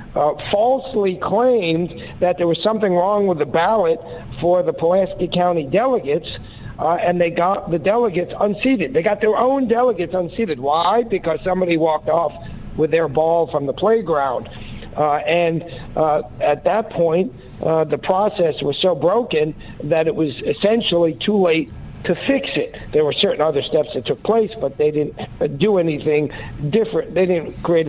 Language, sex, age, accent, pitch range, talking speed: English, male, 50-69, American, 155-195 Hz, 170 wpm